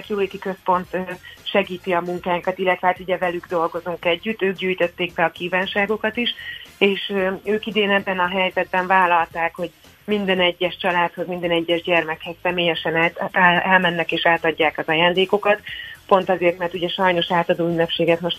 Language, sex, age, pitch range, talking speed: Hungarian, female, 30-49, 170-190 Hz, 145 wpm